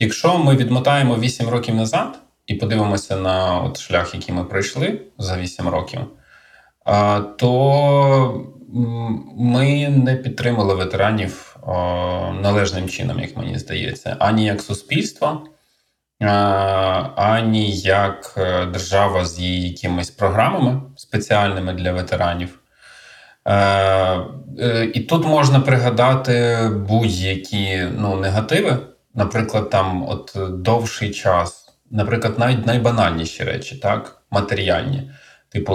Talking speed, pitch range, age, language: 100 wpm, 95-120 Hz, 20-39, Ukrainian